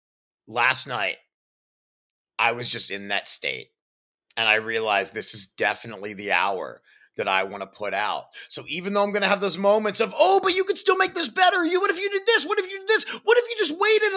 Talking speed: 235 wpm